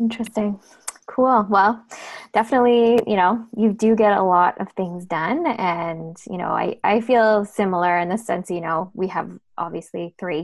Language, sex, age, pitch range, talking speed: English, female, 20-39, 180-230 Hz, 170 wpm